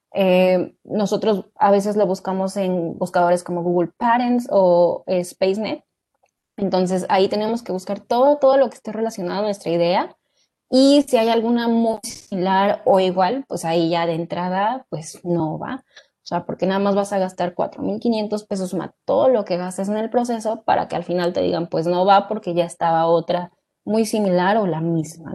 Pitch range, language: 180-225 Hz, Spanish